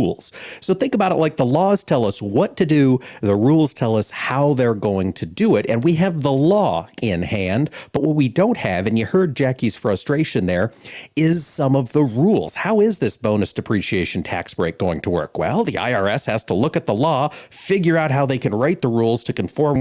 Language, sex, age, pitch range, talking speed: English, male, 40-59, 105-150 Hz, 225 wpm